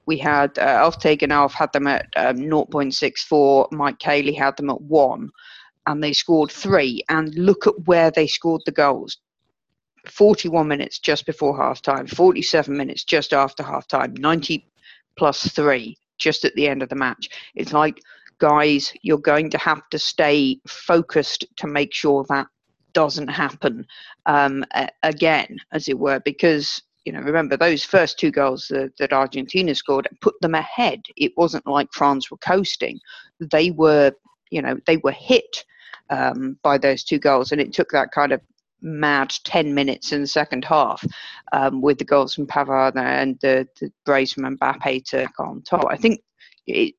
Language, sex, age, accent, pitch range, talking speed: English, female, 50-69, British, 140-165 Hz, 175 wpm